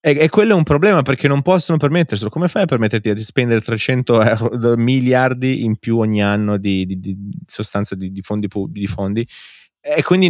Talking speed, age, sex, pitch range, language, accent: 190 wpm, 20-39, male, 100-135 Hz, Italian, native